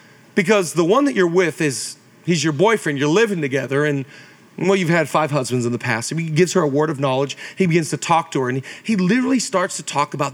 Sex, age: male, 40-59